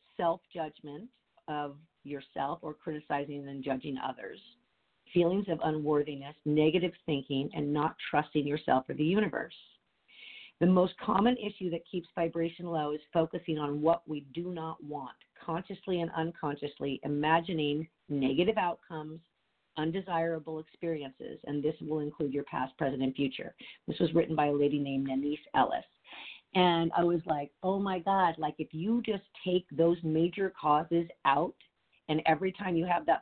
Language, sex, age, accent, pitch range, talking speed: English, female, 50-69, American, 145-170 Hz, 150 wpm